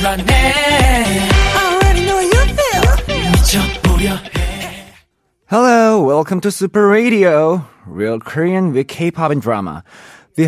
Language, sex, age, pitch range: Korean, male, 20-39, 120-170 Hz